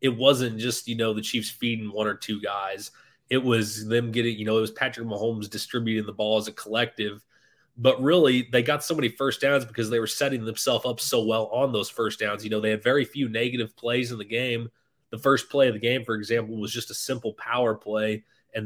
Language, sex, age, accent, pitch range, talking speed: English, male, 20-39, American, 110-120 Hz, 240 wpm